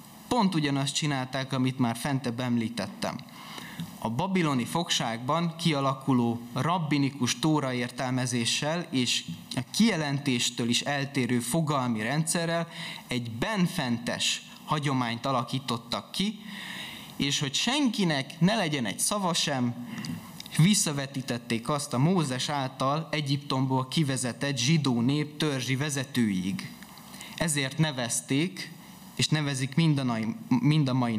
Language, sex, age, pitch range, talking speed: Hungarian, male, 20-39, 125-160 Hz, 100 wpm